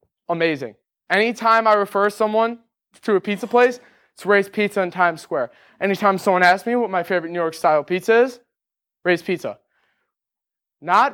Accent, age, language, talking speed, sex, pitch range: American, 20-39, English, 160 wpm, male, 185-235 Hz